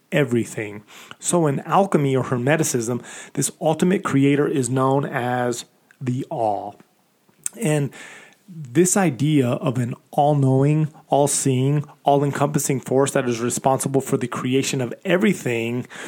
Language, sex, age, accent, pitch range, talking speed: English, male, 30-49, American, 130-160 Hz, 115 wpm